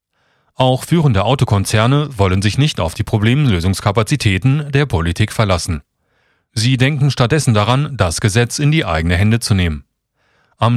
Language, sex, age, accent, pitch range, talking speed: German, male, 40-59, German, 95-135 Hz, 140 wpm